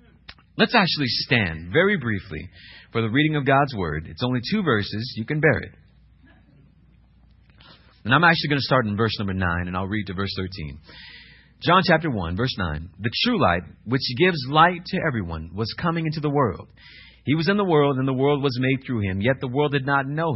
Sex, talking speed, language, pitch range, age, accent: male, 210 wpm, English, 100-160 Hz, 40-59, American